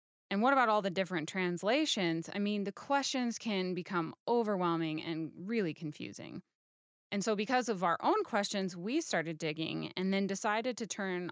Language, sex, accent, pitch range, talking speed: English, female, American, 175-220 Hz, 170 wpm